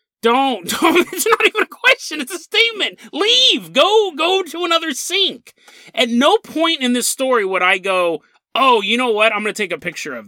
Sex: male